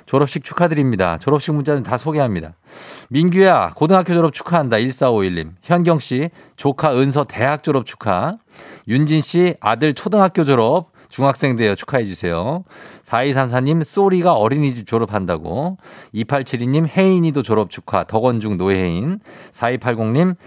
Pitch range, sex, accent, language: 105-150 Hz, male, native, Korean